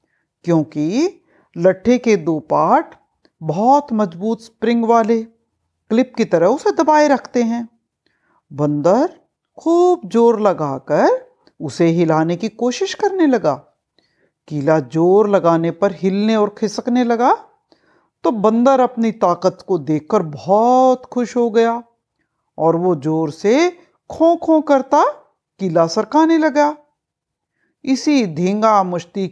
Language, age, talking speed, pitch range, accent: Hindi, 50-69, 115 wpm, 170-275 Hz, native